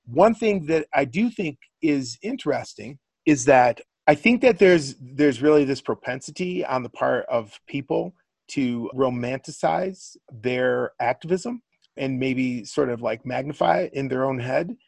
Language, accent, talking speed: English, American, 155 wpm